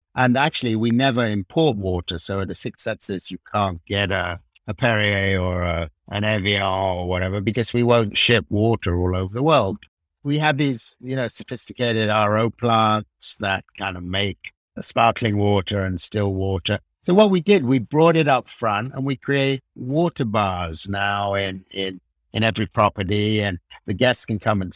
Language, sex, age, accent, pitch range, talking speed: English, male, 60-79, British, 95-120 Hz, 185 wpm